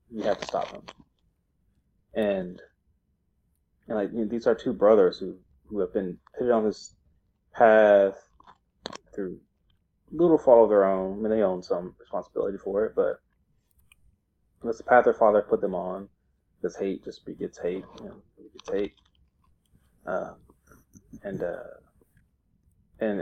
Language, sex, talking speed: English, male, 150 wpm